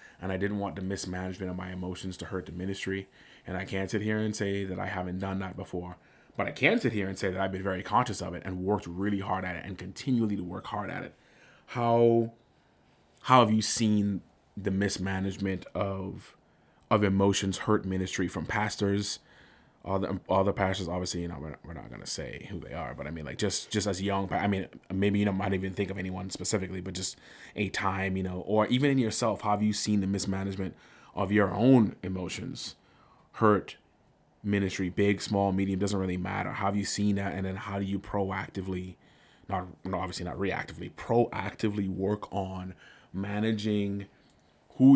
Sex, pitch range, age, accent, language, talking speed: male, 95-105 Hz, 30-49, American, English, 195 wpm